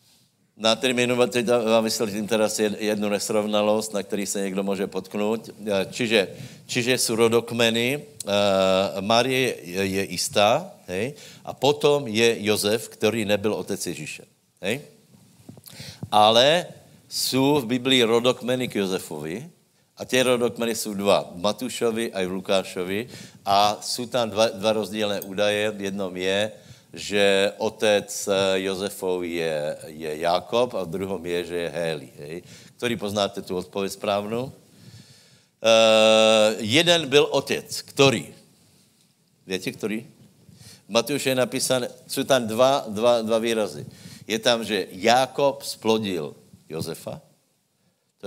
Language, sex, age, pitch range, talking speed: Slovak, male, 60-79, 100-125 Hz, 115 wpm